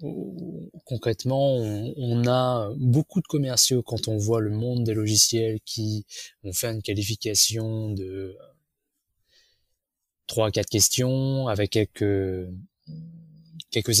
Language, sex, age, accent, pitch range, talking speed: French, male, 20-39, French, 105-130 Hz, 110 wpm